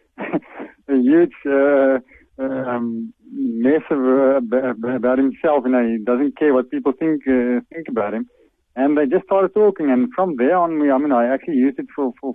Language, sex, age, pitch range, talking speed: English, male, 50-69, 120-150 Hz, 205 wpm